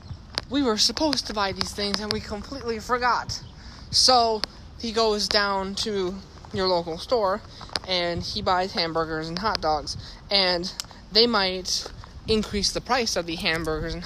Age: 20-39